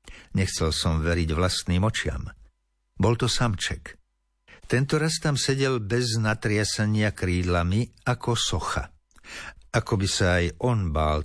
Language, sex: Slovak, male